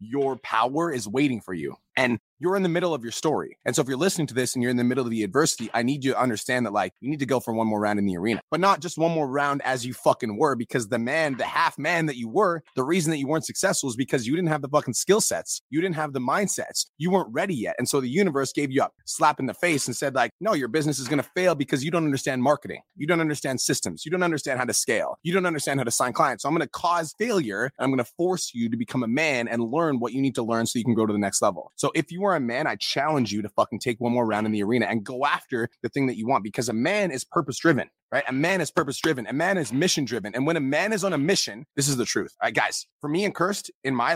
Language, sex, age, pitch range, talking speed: English, male, 30-49, 125-180 Hz, 305 wpm